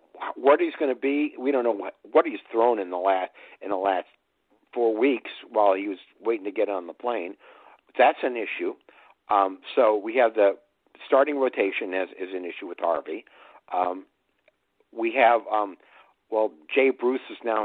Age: 60-79